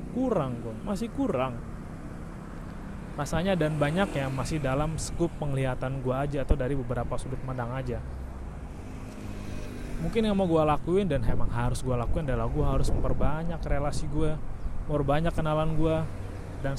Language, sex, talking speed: Indonesian, male, 145 wpm